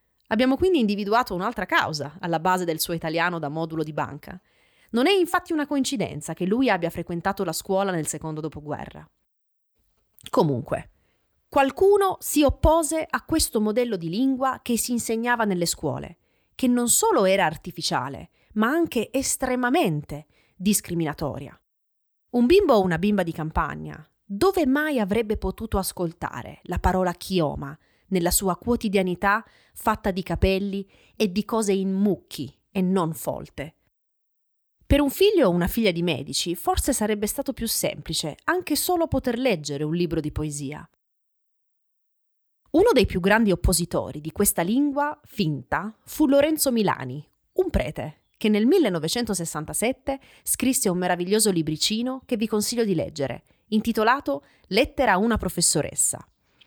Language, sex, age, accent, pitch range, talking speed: Italian, female, 30-49, native, 165-250 Hz, 140 wpm